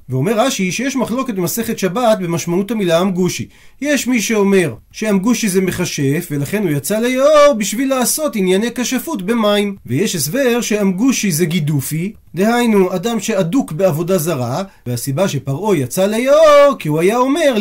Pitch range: 170-230 Hz